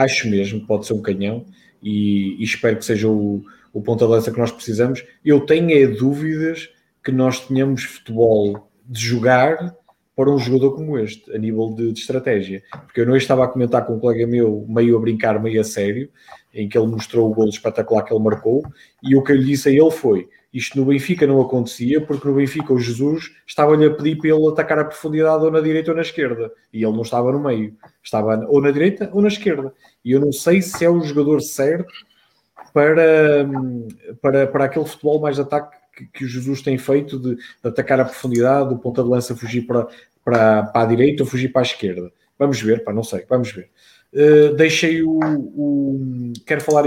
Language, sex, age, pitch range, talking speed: English, male, 20-39, 115-150 Hz, 205 wpm